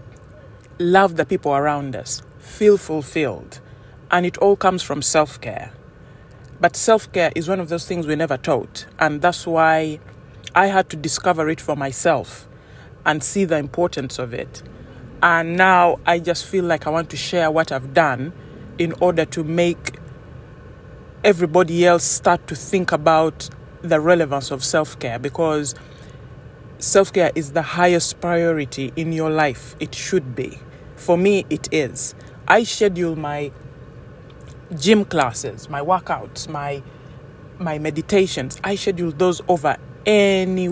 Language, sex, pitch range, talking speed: English, male, 135-175 Hz, 145 wpm